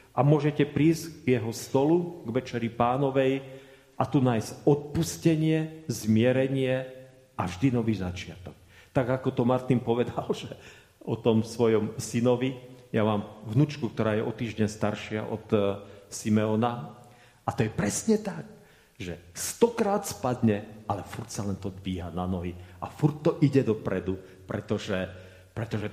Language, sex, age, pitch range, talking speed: Slovak, male, 40-59, 100-135 Hz, 140 wpm